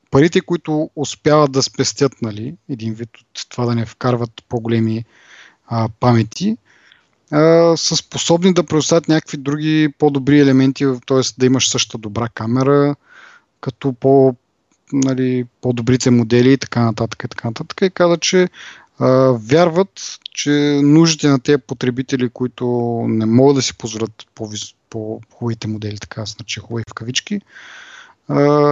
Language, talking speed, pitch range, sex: Bulgarian, 130 wpm, 120-145 Hz, male